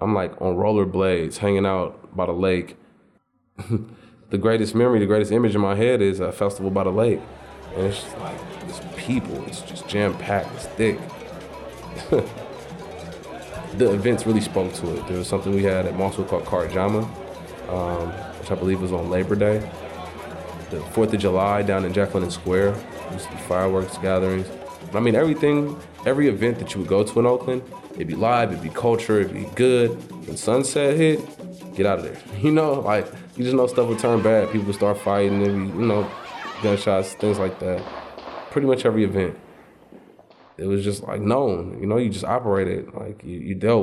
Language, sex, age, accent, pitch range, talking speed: English, male, 20-39, American, 95-110 Hz, 185 wpm